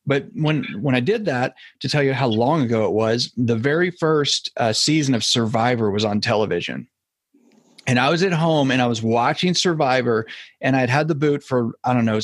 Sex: male